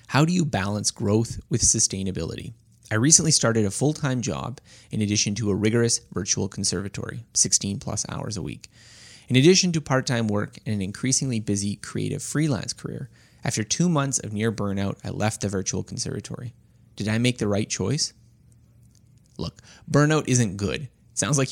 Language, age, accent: English, 20-39, American